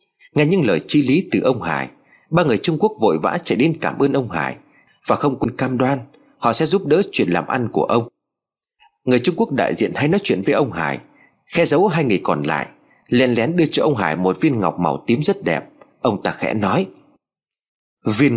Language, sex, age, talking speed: Vietnamese, male, 30-49, 225 wpm